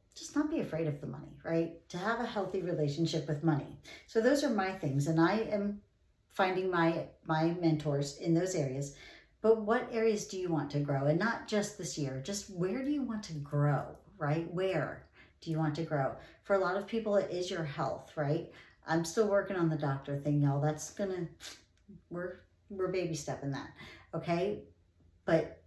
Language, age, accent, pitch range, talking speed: English, 40-59, American, 150-190 Hz, 195 wpm